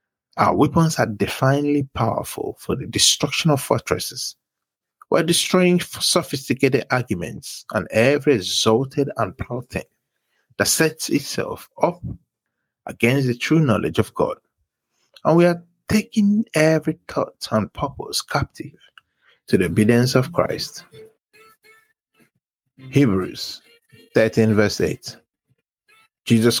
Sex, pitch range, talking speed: male, 110-160 Hz, 115 wpm